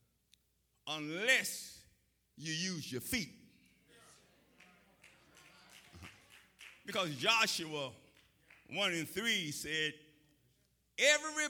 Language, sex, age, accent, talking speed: English, male, 50-69, American, 65 wpm